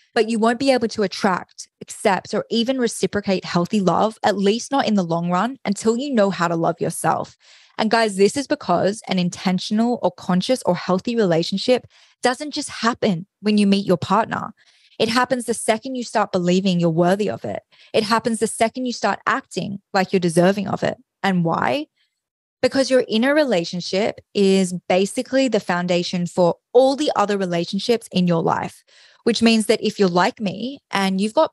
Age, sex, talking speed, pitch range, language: 20-39, female, 185 wpm, 185-230 Hz, English